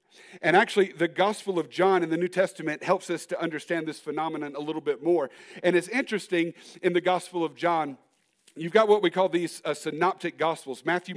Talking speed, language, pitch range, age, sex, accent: 205 wpm, English, 170-215 Hz, 50-69, male, American